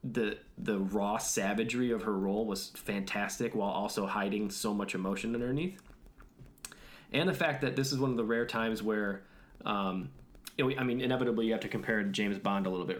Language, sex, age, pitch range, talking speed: English, male, 20-39, 100-120 Hz, 195 wpm